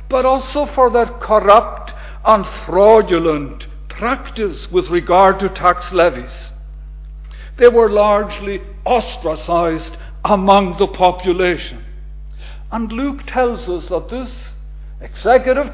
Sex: male